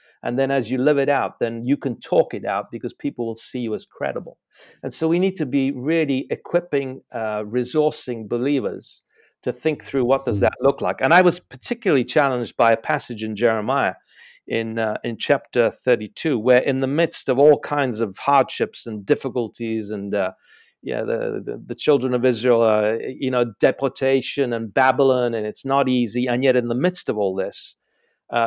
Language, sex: English, male